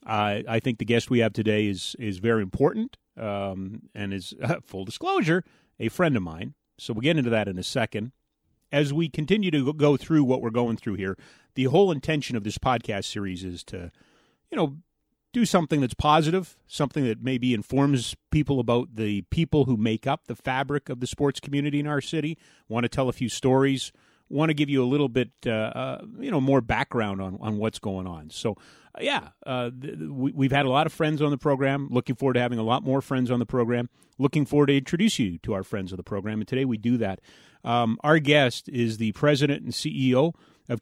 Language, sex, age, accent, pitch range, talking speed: English, male, 40-59, American, 110-145 Hz, 220 wpm